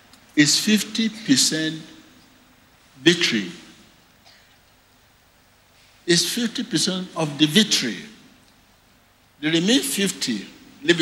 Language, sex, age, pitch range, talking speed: English, male, 60-79, 120-180 Hz, 65 wpm